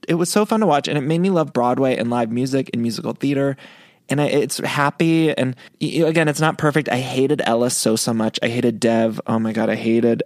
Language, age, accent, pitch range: English, 20-39, American, 110-140 Hz